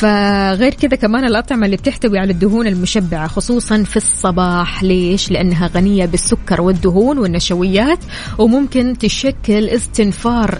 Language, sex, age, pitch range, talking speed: Arabic, female, 20-39, 180-230 Hz, 120 wpm